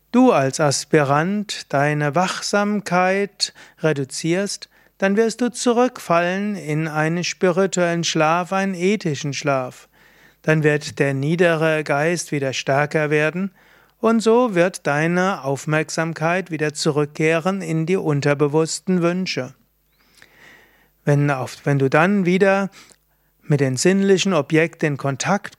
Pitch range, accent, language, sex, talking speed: 145-185 Hz, German, German, male, 110 wpm